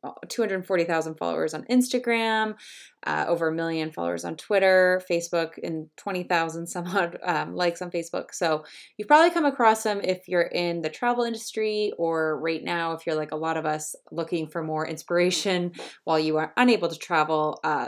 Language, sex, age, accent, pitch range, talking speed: English, female, 20-39, American, 155-185 Hz, 180 wpm